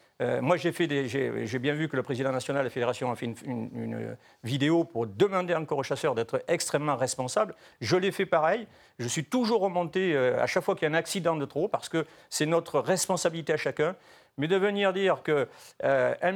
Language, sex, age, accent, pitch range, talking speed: French, male, 50-69, French, 135-185 Hz, 230 wpm